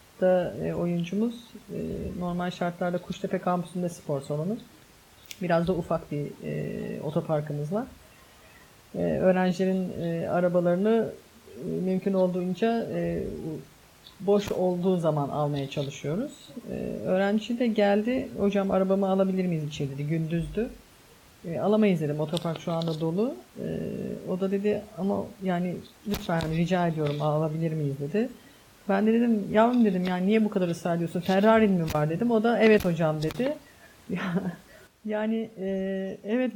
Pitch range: 175-225 Hz